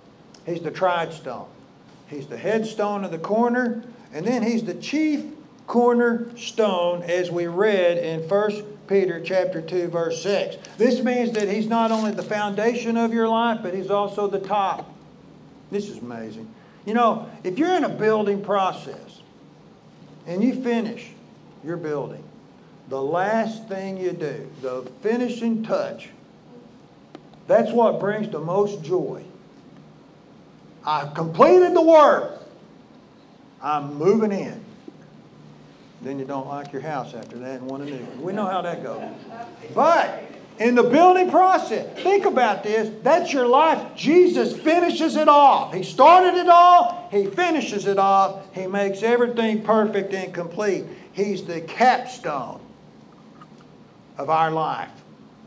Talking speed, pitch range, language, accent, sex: 140 wpm, 175-240 Hz, English, American, male